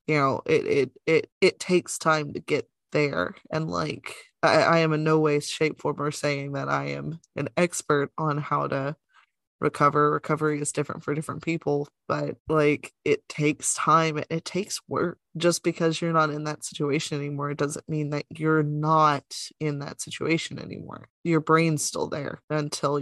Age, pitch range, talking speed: 20-39, 145-165 Hz, 180 wpm